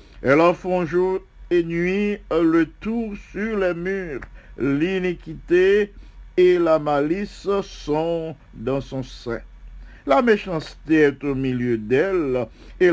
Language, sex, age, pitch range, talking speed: English, male, 60-79, 140-180 Hz, 120 wpm